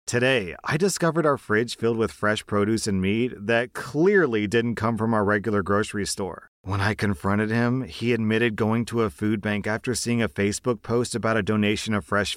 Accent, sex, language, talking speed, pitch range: American, male, English, 200 wpm, 110-145 Hz